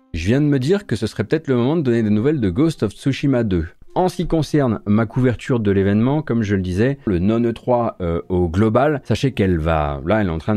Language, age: French, 40-59